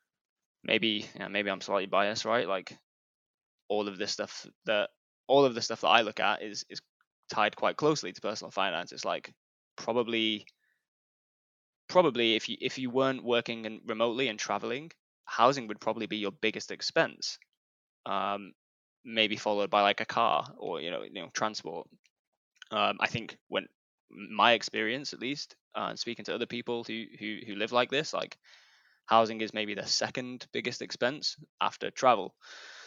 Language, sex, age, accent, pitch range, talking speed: English, male, 10-29, British, 105-120 Hz, 170 wpm